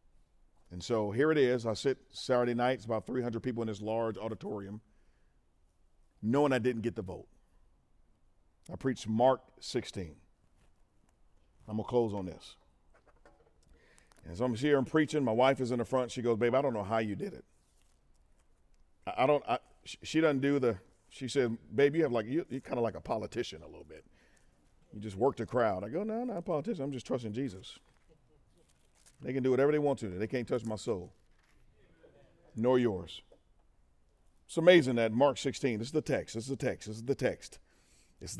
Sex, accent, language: male, American, English